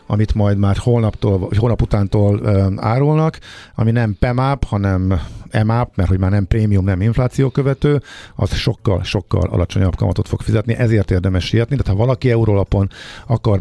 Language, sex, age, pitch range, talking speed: Hungarian, male, 50-69, 95-120 Hz, 150 wpm